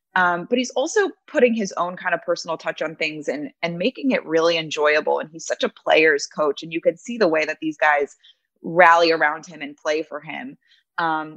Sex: female